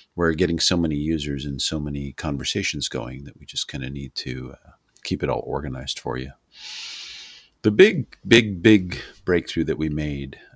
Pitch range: 75-85 Hz